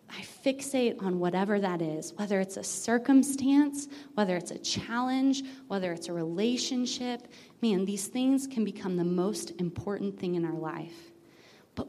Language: English